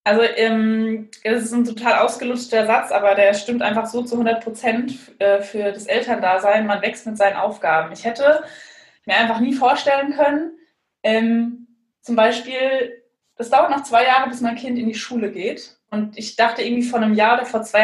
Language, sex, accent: German, female, German